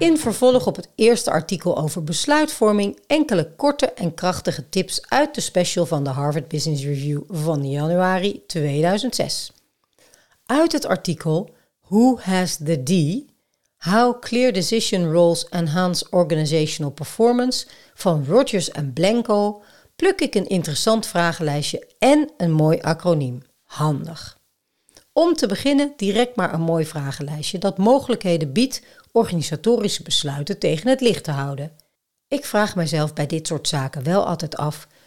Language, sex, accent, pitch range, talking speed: Dutch, female, Dutch, 155-225 Hz, 135 wpm